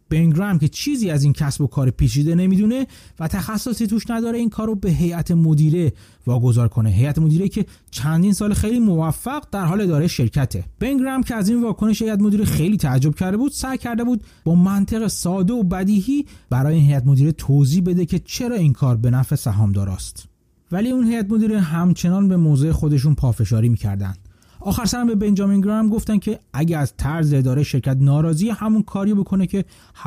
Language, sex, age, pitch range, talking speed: Persian, male, 30-49, 135-205 Hz, 185 wpm